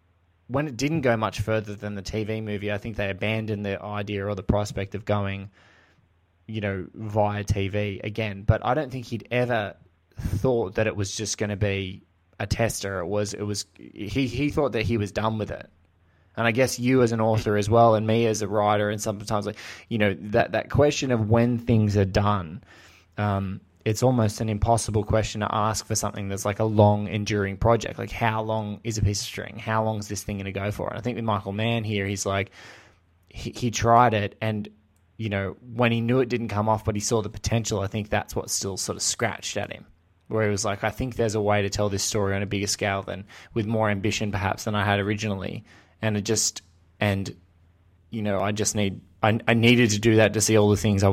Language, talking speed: English, 235 wpm